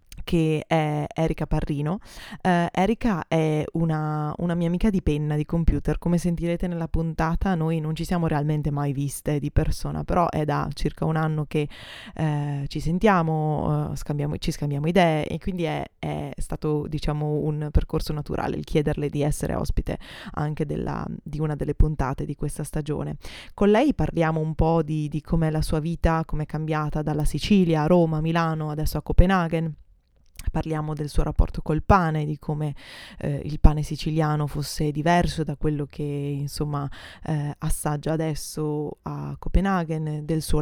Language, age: Italian, 20-39